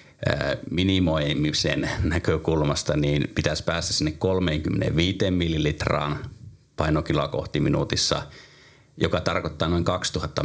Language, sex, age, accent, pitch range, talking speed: Finnish, male, 30-49, native, 75-95 Hz, 80 wpm